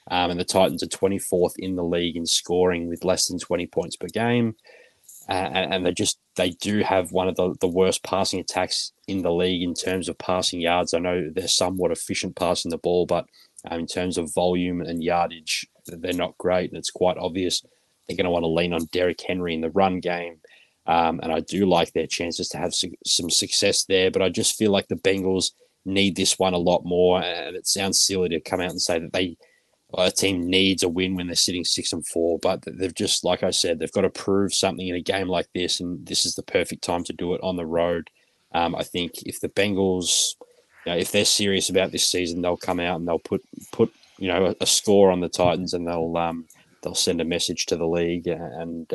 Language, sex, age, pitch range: English, male, 20-39, 85-95 Hz